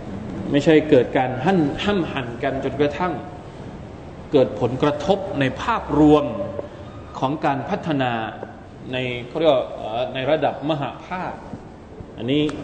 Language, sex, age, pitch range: Thai, male, 20-39, 135-170 Hz